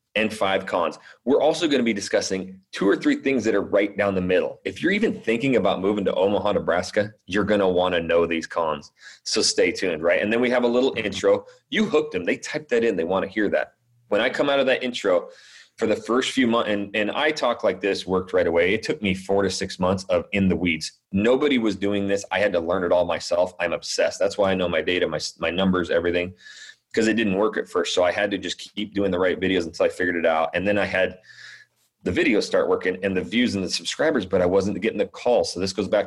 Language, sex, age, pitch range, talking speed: English, male, 30-49, 95-150 Hz, 260 wpm